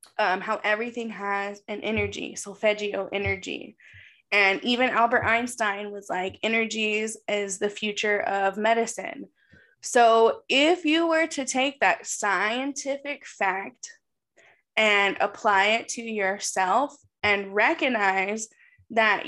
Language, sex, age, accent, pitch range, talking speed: English, female, 10-29, American, 210-260 Hz, 115 wpm